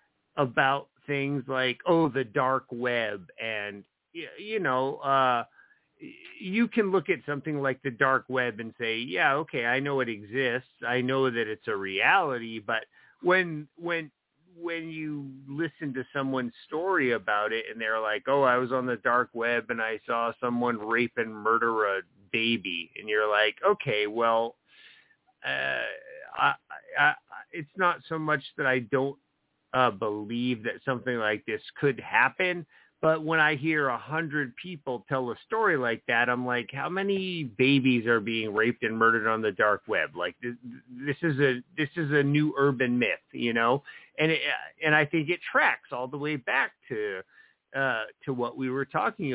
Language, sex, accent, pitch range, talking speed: English, male, American, 120-155 Hz, 175 wpm